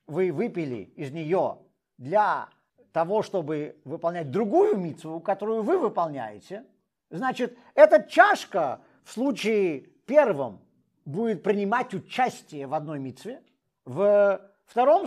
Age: 50-69